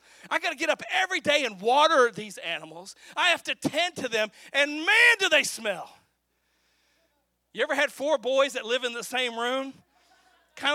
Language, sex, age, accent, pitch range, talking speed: English, male, 40-59, American, 180-280 Hz, 190 wpm